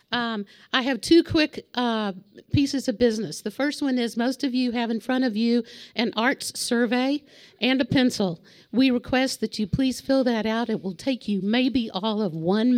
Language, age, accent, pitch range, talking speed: English, 50-69, American, 210-255 Hz, 200 wpm